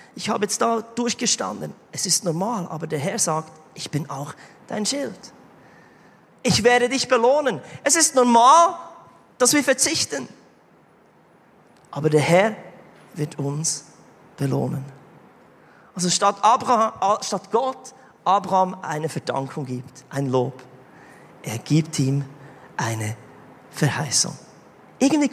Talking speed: 120 wpm